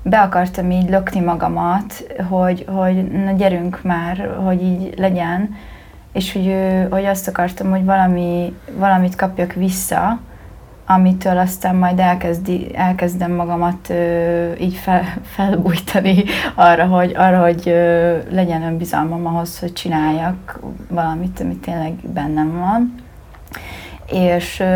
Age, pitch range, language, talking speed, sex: 30-49, 175-190 Hz, Hungarian, 115 wpm, female